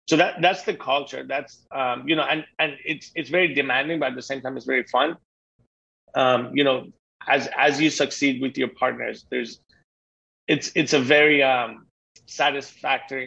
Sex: male